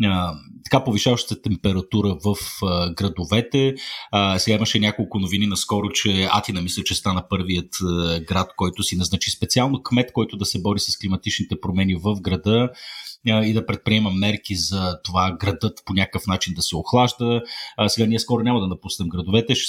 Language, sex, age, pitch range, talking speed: Bulgarian, male, 30-49, 95-115 Hz, 155 wpm